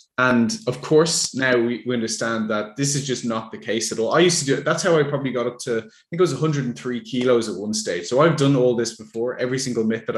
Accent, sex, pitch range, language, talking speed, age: Irish, male, 115-145 Hz, English, 275 wpm, 20-39